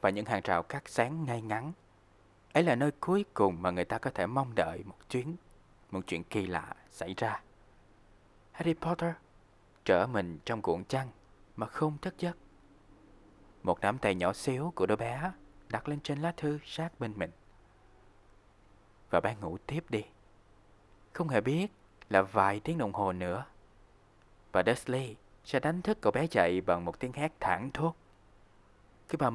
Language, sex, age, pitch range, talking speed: Vietnamese, male, 20-39, 100-140 Hz, 170 wpm